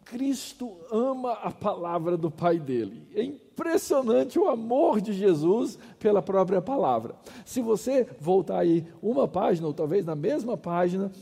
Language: English